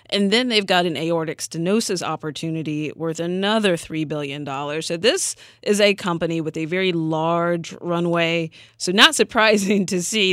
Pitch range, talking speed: 160-200 Hz, 155 wpm